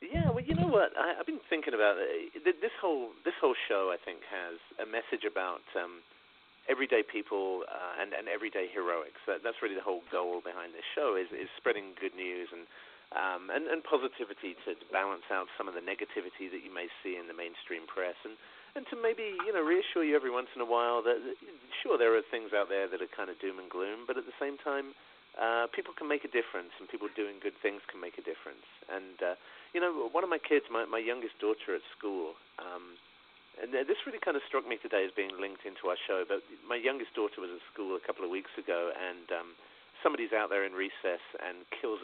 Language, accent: English, British